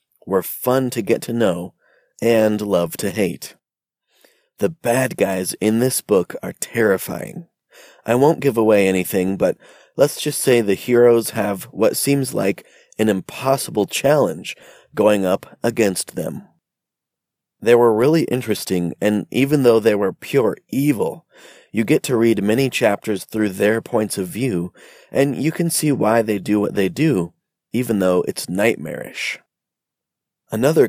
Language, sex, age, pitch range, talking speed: English, male, 30-49, 105-135 Hz, 150 wpm